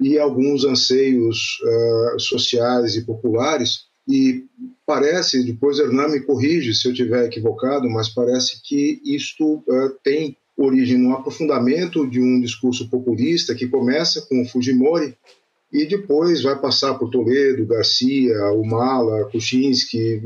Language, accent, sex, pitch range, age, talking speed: Portuguese, Brazilian, male, 115-165 Hz, 40-59, 130 wpm